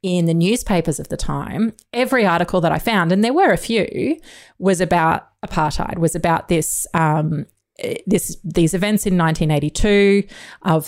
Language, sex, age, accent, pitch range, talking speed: English, female, 20-39, Australian, 155-200 Hz, 160 wpm